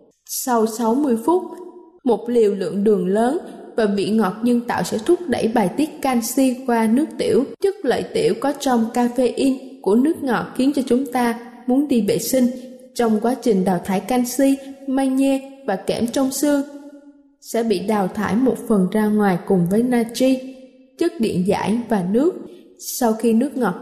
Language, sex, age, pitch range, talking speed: Vietnamese, female, 10-29, 225-275 Hz, 175 wpm